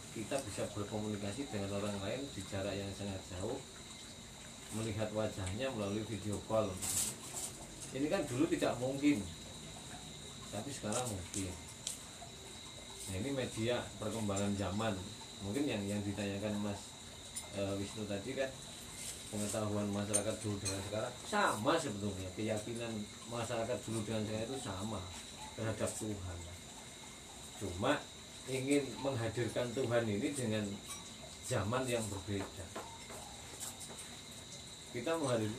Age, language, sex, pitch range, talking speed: 20-39, Indonesian, male, 100-120 Hz, 110 wpm